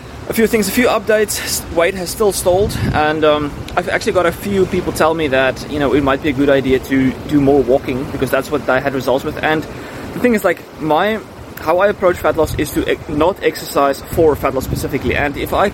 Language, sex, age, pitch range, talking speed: English, male, 20-39, 135-160 Hz, 240 wpm